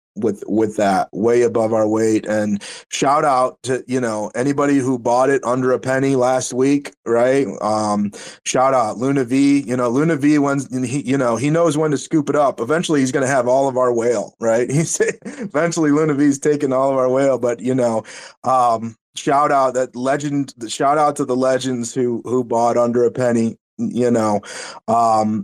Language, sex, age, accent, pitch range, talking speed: English, male, 30-49, American, 120-140 Hz, 200 wpm